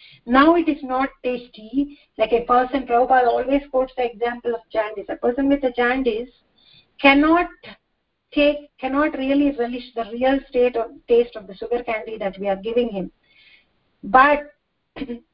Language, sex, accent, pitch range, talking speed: English, female, Indian, 235-280 Hz, 155 wpm